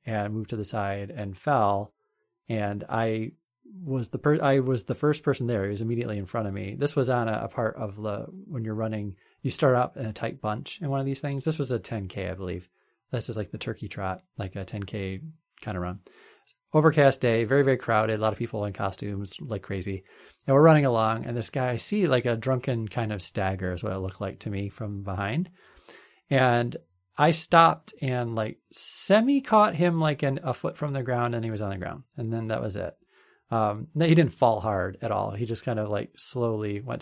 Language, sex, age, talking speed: English, male, 30-49, 230 wpm